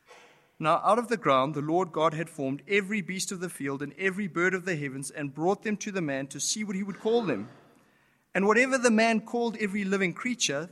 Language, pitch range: English, 155-200 Hz